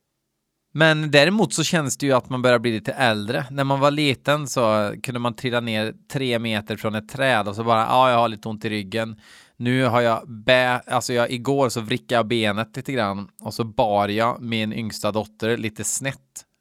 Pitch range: 110-140 Hz